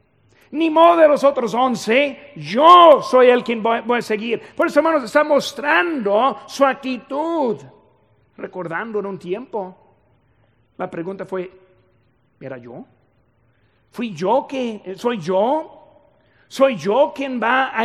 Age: 50-69